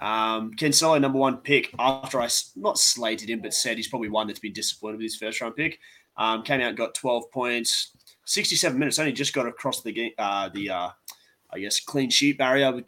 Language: English